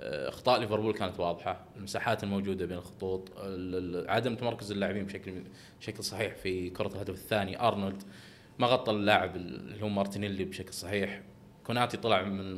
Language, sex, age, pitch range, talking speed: Arabic, male, 20-39, 100-130 Hz, 145 wpm